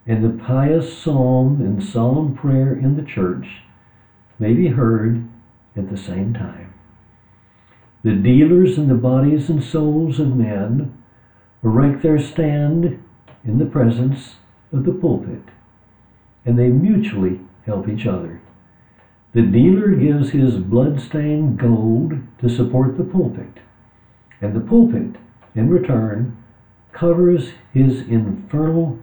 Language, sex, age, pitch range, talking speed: English, male, 60-79, 105-135 Hz, 120 wpm